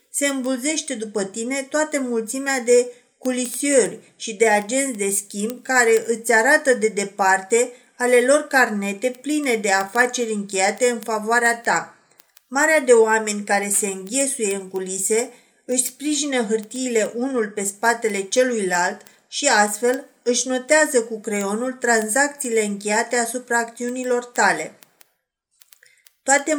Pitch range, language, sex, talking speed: 215-255 Hz, Romanian, female, 125 wpm